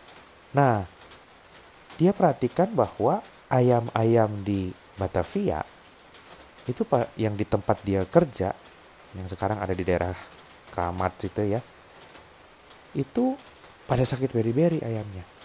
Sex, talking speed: male, 100 wpm